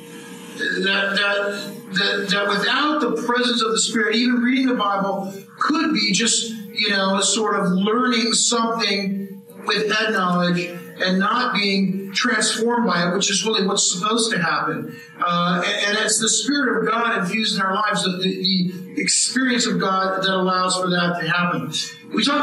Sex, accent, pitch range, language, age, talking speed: male, American, 190-230 Hz, English, 50-69, 170 wpm